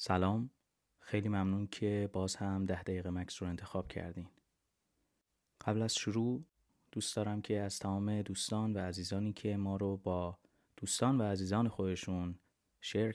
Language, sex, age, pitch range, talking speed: Persian, male, 30-49, 95-115 Hz, 145 wpm